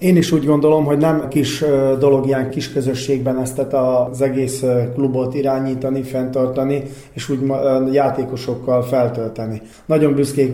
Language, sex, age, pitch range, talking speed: Hungarian, male, 30-49, 130-150 Hz, 135 wpm